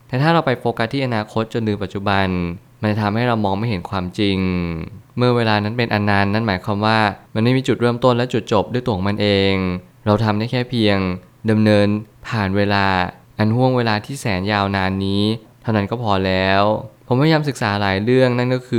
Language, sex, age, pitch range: Thai, male, 20-39, 100-120 Hz